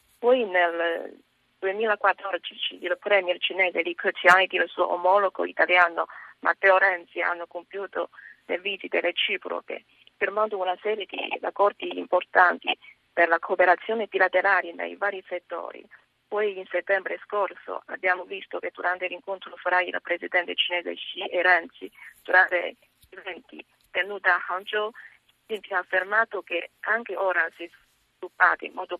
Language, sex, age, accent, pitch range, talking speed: Italian, female, 30-49, native, 180-205 Hz, 135 wpm